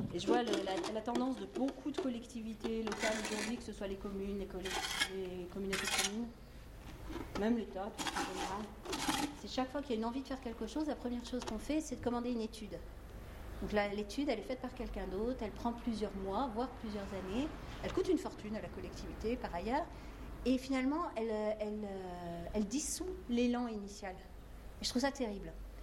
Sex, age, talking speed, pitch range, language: female, 40-59, 205 wpm, 200-260 Hz, French